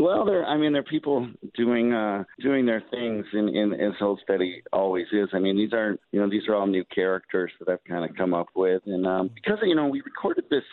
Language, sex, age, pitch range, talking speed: English, male, 50-69, 90-120 Hz, 240 wpm